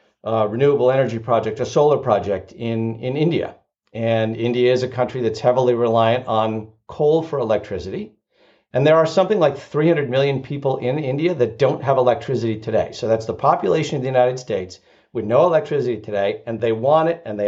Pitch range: 110-140 Hz